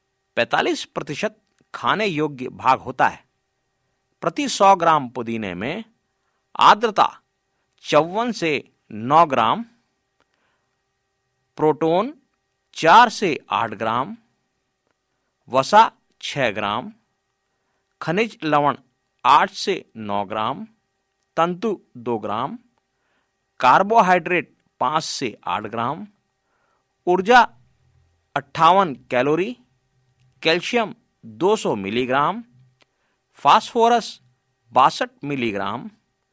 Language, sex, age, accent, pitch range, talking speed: Hindi, male, 50-69, native, 125-210 Hz, 80 wpm